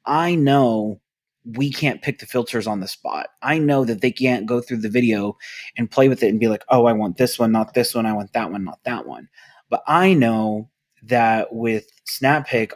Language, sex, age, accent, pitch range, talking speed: English, male, 30-49, American, 115-140 Hz, 225 wpm